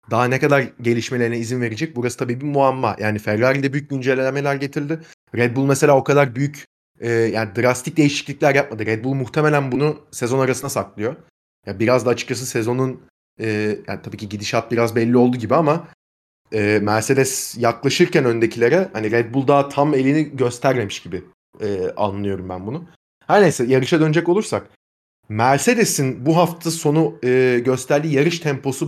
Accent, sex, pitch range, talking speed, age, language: native, male, 115-160 Hz, 160 wpm, 30-49, Turkish